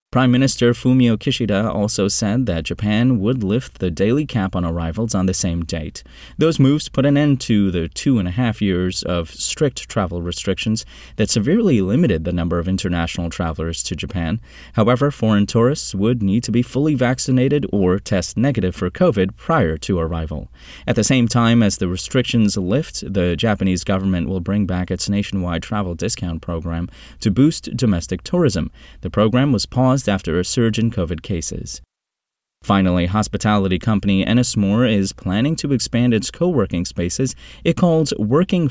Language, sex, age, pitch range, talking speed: English, male, 30-49, 90-125 Hz, 170 wpm